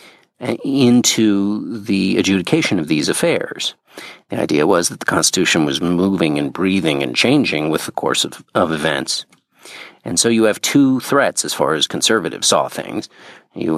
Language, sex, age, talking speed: English, male, 50-69, 160 wpm